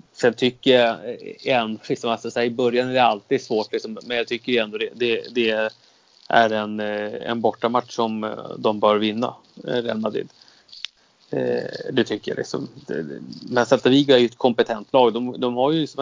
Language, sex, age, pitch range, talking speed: Swedish, male, 30-49, 115-140 Hz, 180 wpm